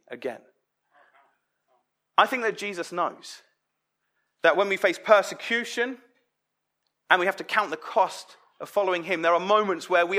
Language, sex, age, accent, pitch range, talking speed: English, male, 30-49, British, 175-220 Hz, 155 wpm